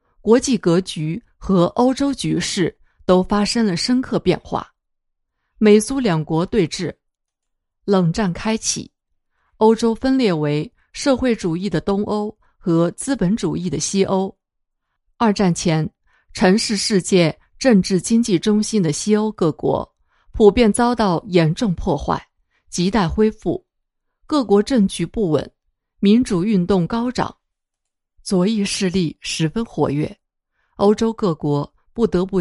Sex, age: female, 50-69